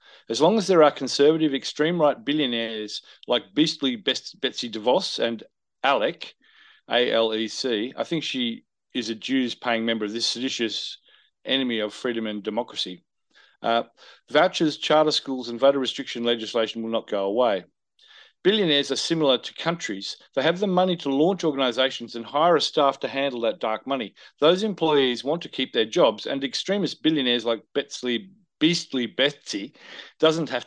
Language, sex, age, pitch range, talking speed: English, male, 40-59, 115-150 Hz, 165 wpm